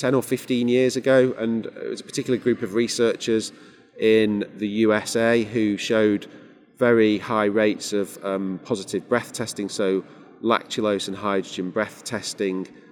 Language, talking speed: English, 150 wpm